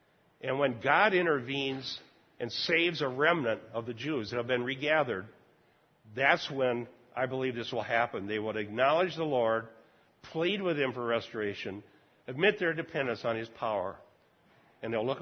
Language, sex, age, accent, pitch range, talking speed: English, male, 50-69, American, 115-155 Hz, 160 wpm